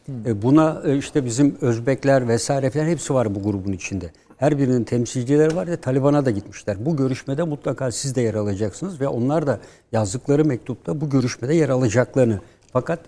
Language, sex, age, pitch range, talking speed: Turkish, male, 60-79, 115-145 Hz, 160 wpm